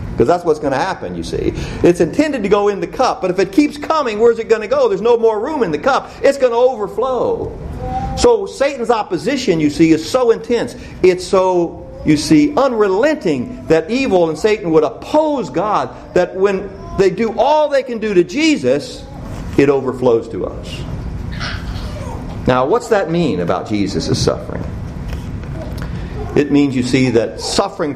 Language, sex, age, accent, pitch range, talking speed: English, male, 50-69, American, 145-240 Hz, 180 wpm